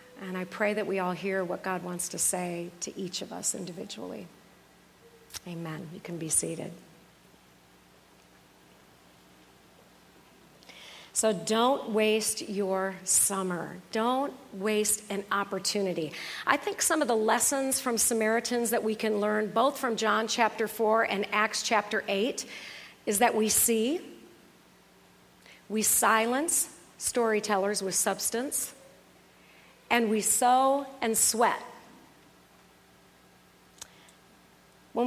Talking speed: 115 wpm